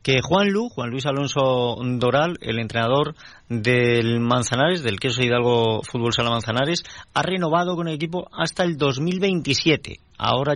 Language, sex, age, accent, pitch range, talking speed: Spanish, male, 40-59, Spanish, 110-150 Hz, 150 wpm